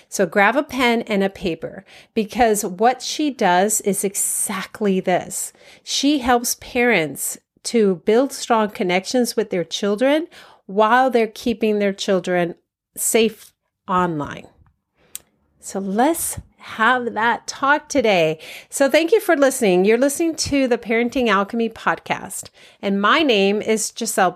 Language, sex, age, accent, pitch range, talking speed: English, female, 40-59, American, 200-270 Hz, 135 wpm